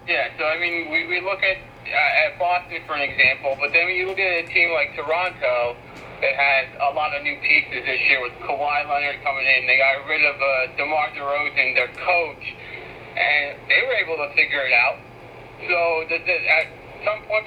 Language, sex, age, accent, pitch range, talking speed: English, male, 50-69, American, 130-170 Hz, 205 wpm